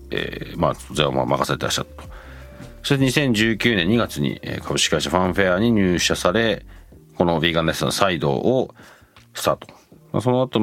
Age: 40-59